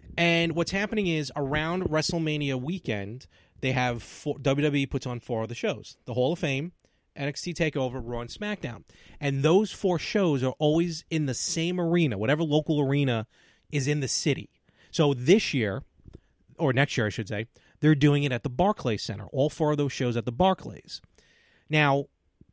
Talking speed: 180 wpm